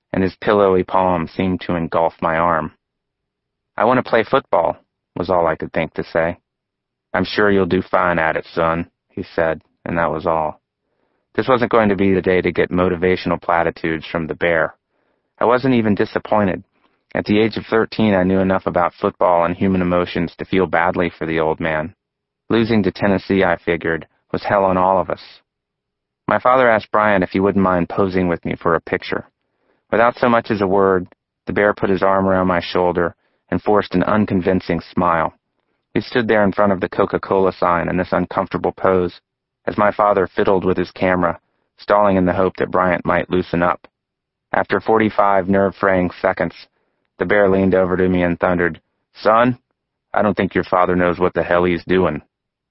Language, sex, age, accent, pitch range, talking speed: English, male, 30-49, American, 90-100 Hz, 195 wpm